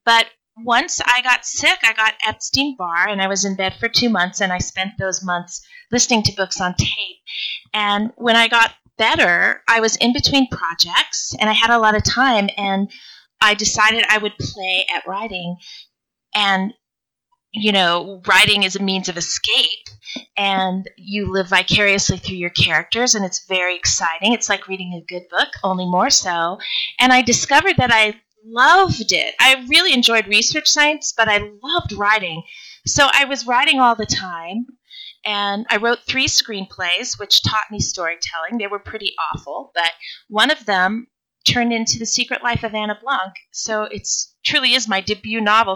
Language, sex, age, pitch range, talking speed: English, female, 30-49, 190-235 Hz, 180 wpm